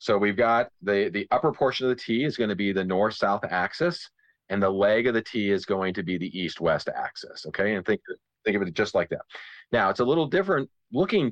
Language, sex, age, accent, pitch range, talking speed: English, male, 30-49, American, 95-115 Hz, 235 wpm